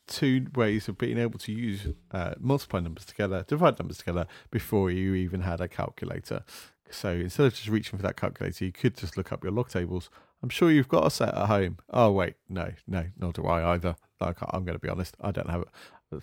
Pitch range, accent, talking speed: 85-105 Hz, British, 230 wpm